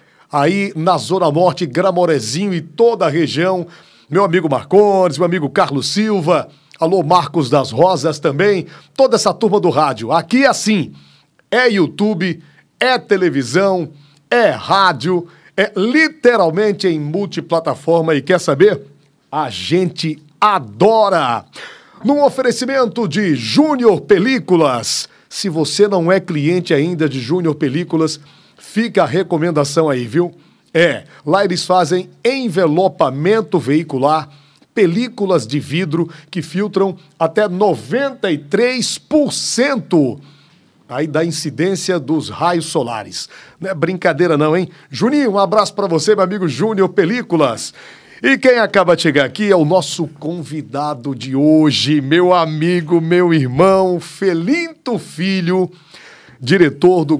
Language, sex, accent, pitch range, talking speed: Portuguese, male, Brazilian, 155-200 Hz, 120 wpm